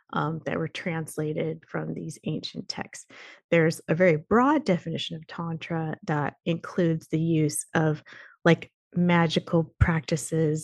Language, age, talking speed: English, 30-49, 130 wpm